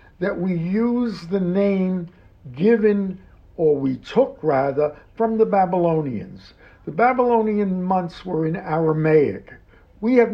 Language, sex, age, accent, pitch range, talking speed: English, male, 60-79, American, 150-205 Hz, 120 wpm